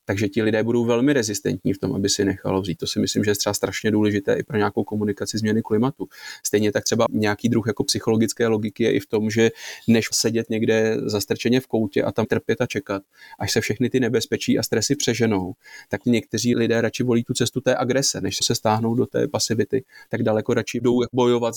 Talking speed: 215 wpm